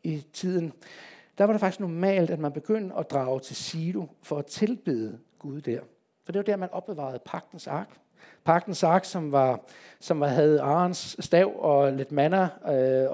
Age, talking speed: 60-79, 180 wpm